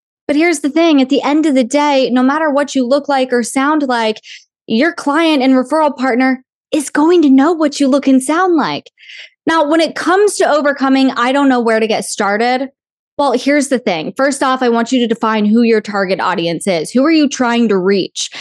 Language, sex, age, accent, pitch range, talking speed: English, female, 20-39, American, 230-290 Hz, 225 wpm